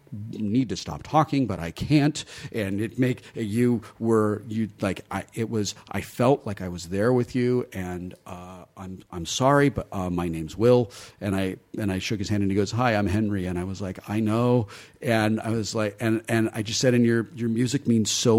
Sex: male